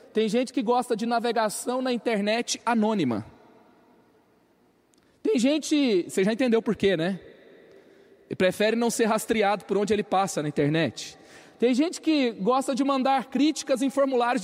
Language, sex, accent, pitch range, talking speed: Portuguese, male, Brazilian, 205-275 Hz, 145 wpm